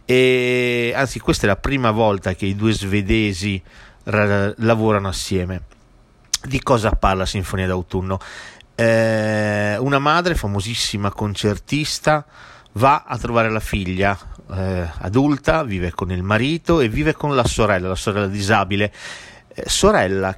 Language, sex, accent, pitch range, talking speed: Italian, male, native, 100-130 Hz, 125 wpm